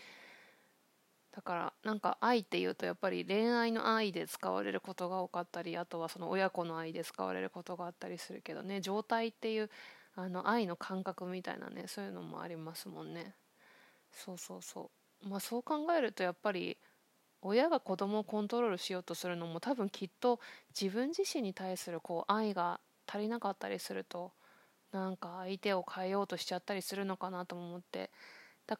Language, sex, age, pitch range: Japanese, female, 20-39, 175-205 Hz